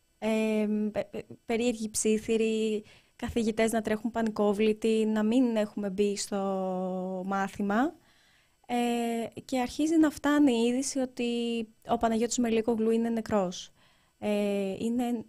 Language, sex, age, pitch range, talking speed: Greek, female, 20-39, 200-240 Hz, 80 wpm